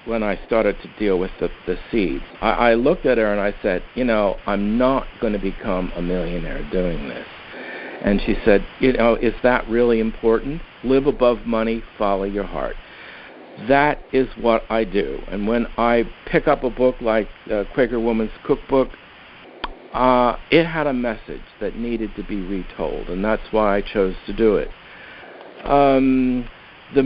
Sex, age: male, 60-79